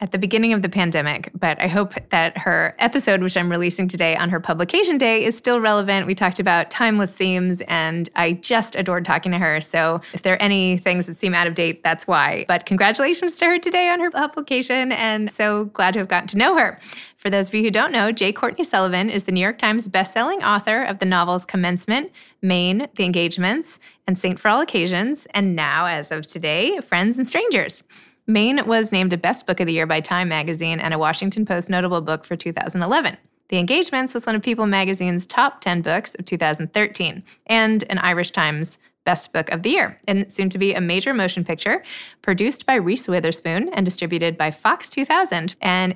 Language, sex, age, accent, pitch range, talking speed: English, female, 20-39, American, 175-215 Hz, 210 wpm